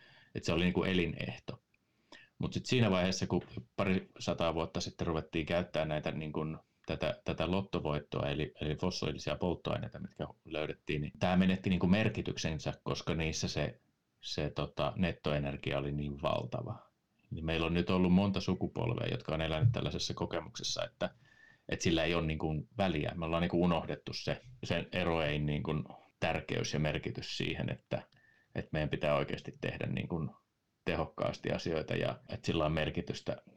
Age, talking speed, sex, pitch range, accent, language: 30-49, 150 wpm, male, 75-95 Hz, native, Finnish